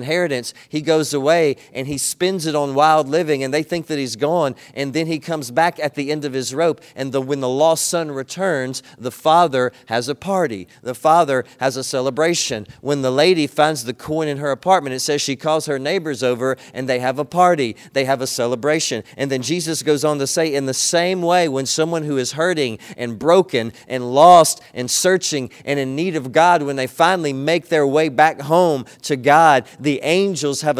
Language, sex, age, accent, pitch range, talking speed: English, male, 40-59, American, 130-165 Hz, 215 wpm